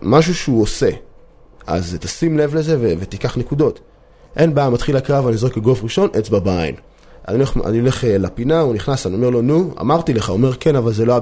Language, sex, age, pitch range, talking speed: Hebrew, male, 20-39, 100-135 Hz, 220 wpm